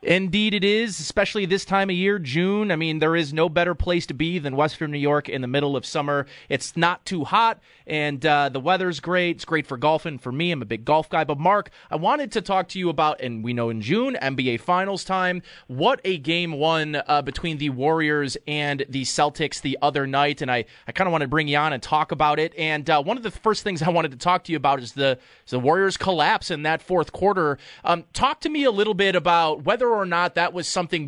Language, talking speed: English, 245 wpm